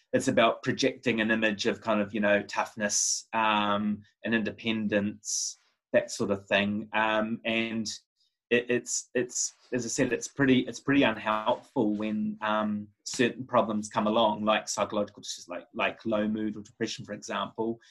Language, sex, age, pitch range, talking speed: English, male, 20-39, 105-125 Hz, 160 wpm